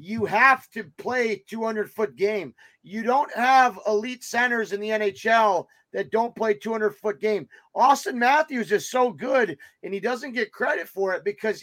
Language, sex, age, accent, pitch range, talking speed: English, male, 30-49, American, 195-245 Hz, 165 wpm